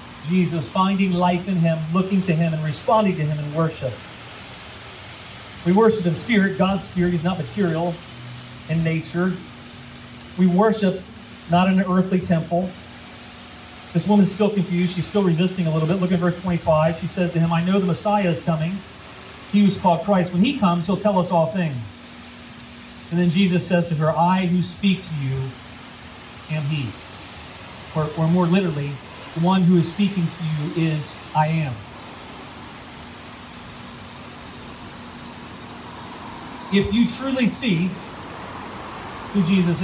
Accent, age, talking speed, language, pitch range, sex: American, 40-59, 150 wpm, English, 135-195 Hz, male